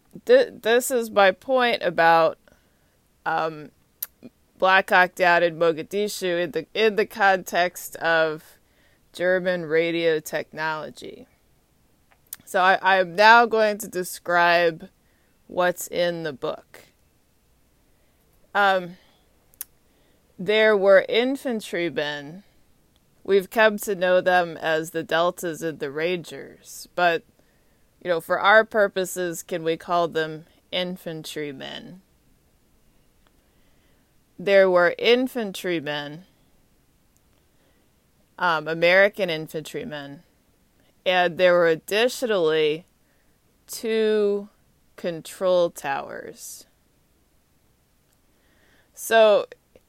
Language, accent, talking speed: English, American, 85 wpm